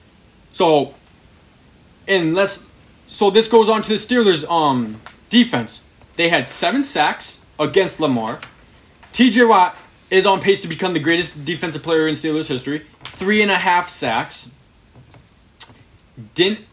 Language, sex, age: English, male, 20-39